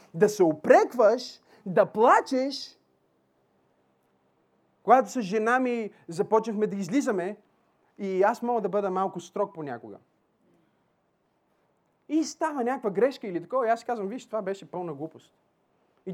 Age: 30-49